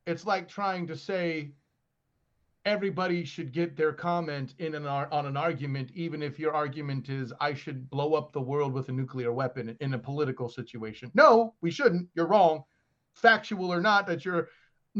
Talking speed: 185 wpm